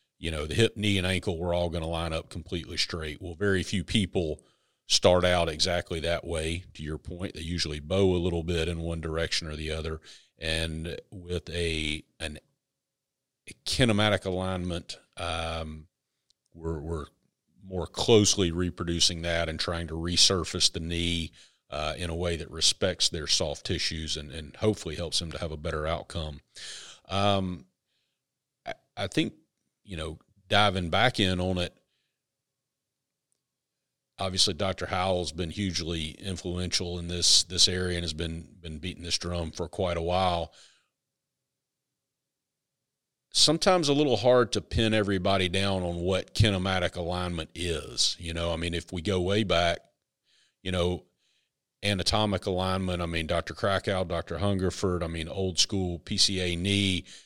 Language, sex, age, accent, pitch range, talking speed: English, male, 40-59, American, 85-100 Hz, 155 wpm